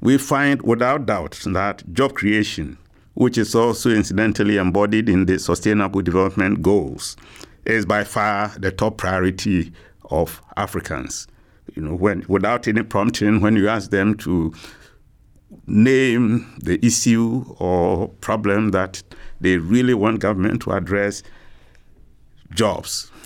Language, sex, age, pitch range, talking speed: English, male, 50-69, 95-120 Hz, 125 wpm